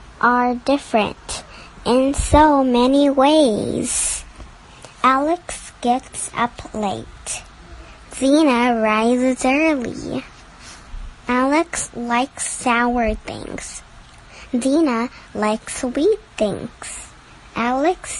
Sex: male